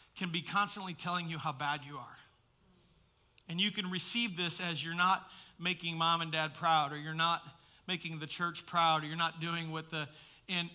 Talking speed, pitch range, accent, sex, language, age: 200 wpm, 175-235 Hz, American, male, English, 40-59